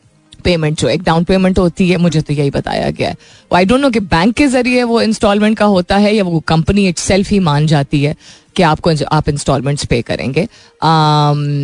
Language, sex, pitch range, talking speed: Hindi, female, 150-190 Hz, 200 wpm